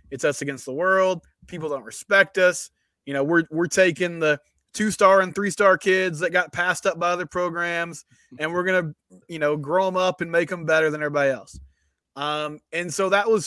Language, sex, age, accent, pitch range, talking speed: English, male, 20-39, American, 150-190 Hz, 220 wpm